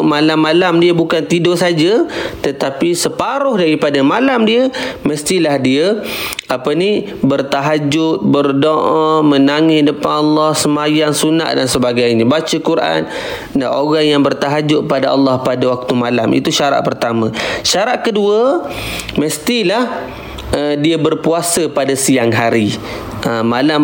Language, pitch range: Malay, 130-170 Hz